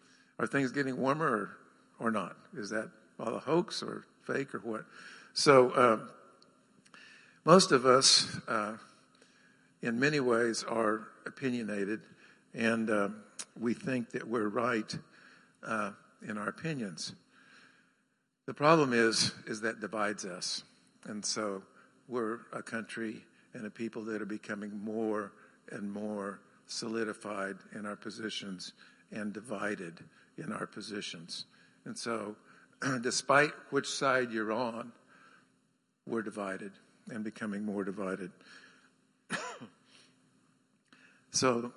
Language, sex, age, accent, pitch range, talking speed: English, male, 60-79, American, 105-130 Hz, 115 wpm